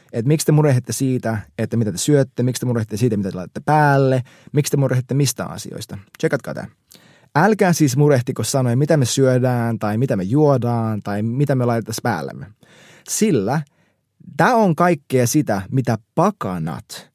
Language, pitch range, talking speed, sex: Finnish, 115-155 Hz, 155 wpm, male